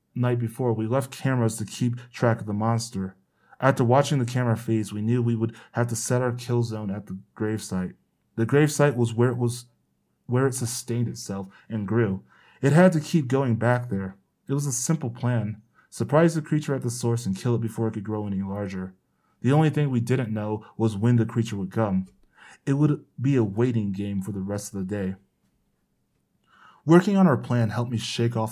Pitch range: 105-125 Hz